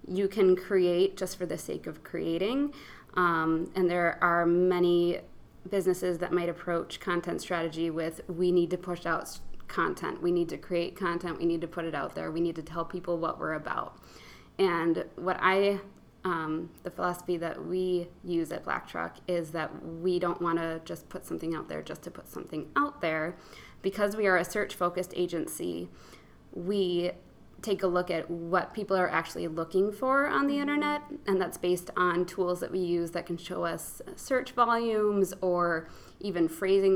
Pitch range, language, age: 165-190 Hz, English, 20-39